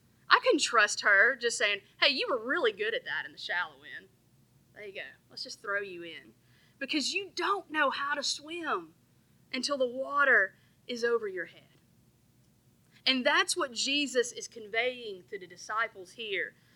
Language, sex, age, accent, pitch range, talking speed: English, female, 30-49, American, 220-305 Hz, 175 wpm